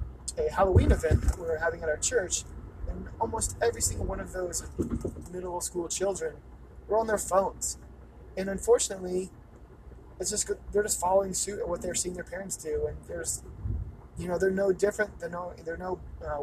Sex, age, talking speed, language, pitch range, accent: male, 20-39, 185 wpm, English, 165-200 Hz, American